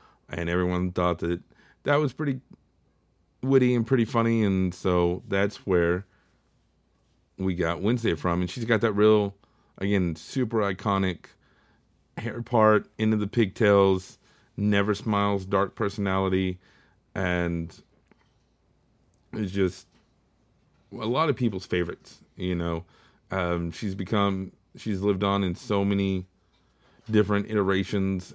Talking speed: 120 wpm